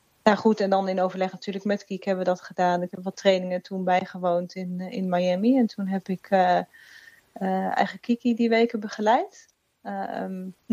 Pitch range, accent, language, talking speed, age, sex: 185-215 Hz, Dutch, Dutch, 190 wpm, 30-49, female